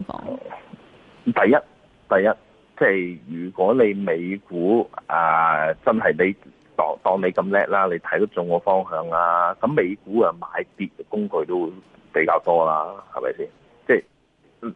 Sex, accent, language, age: male, native, Chinese, 30-49